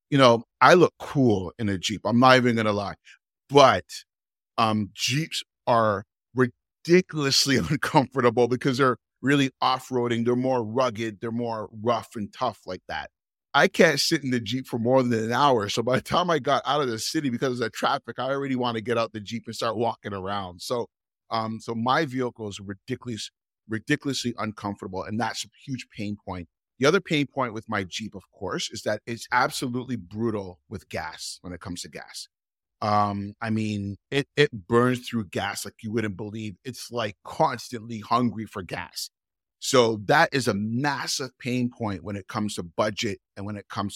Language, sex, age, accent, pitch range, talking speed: English, male, 30-49, American, 100-125 Hz, 190 wpm